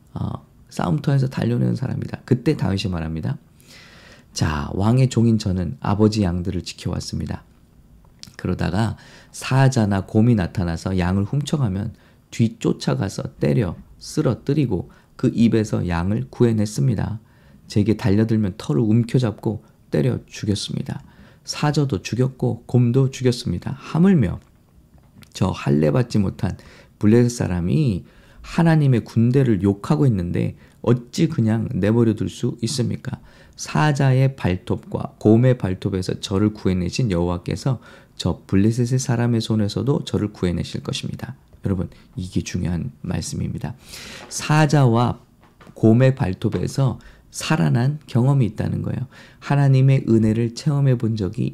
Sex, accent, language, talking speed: male, Korean, English, 95 wpm